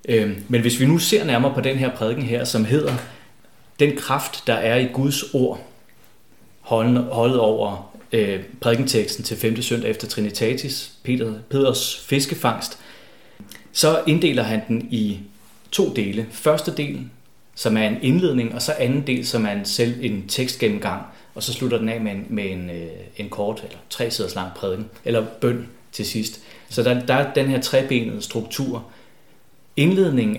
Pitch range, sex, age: 110-130 Hz, male, 30-49